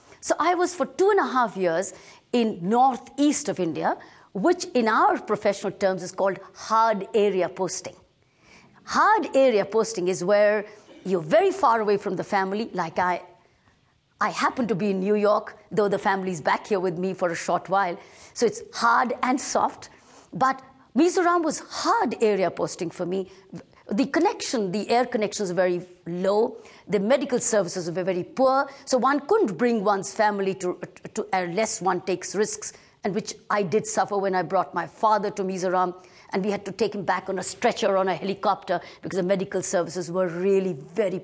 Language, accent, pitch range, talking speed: English, Indian, 185-240 Hz, 185 wpm